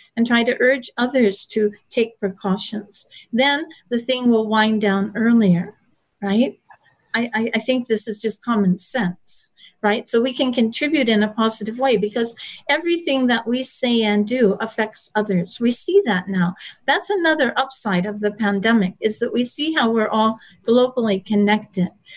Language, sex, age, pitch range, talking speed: English, female, 50-69, 205-250 Hz, 170 wpm